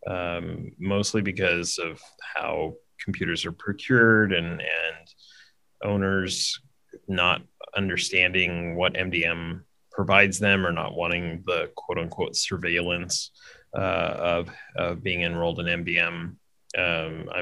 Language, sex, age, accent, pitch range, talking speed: English, male, 30-49, American, 90-110 Hz, 105 wpm